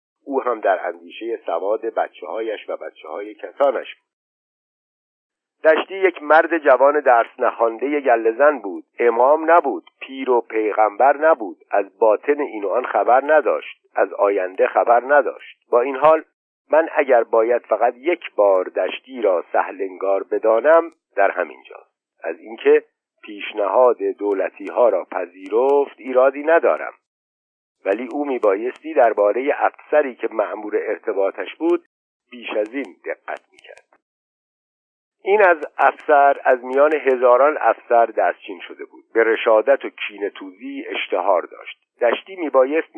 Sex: male